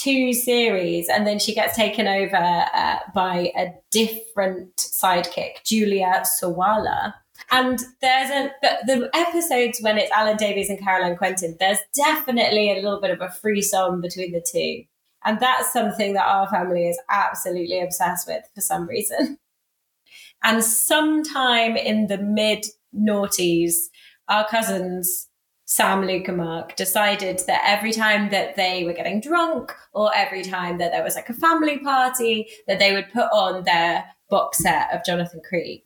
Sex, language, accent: female, English, British